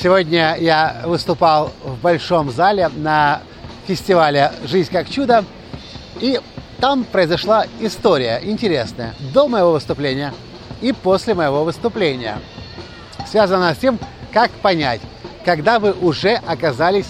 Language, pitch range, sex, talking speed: Russian, 155-220 Hz, male, 110 wpm